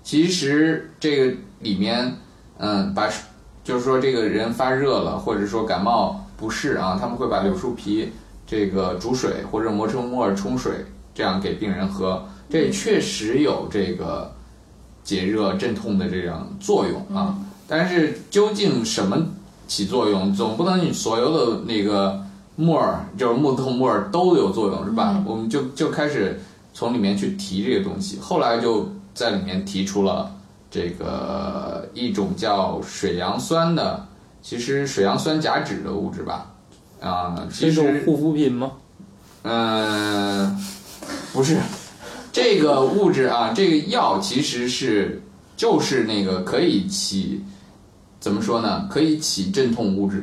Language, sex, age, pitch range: Chinese, male, 20-39, 100-165 Hz